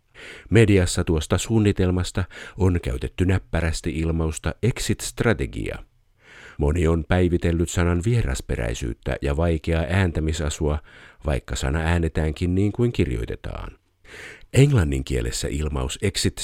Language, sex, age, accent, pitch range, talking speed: Finnish, male, 50-69, native, 75-95 Hz, 95 wpm